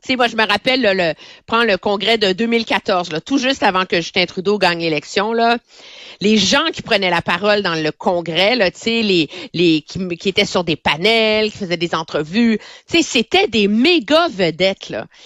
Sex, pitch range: female, 180-250 Hz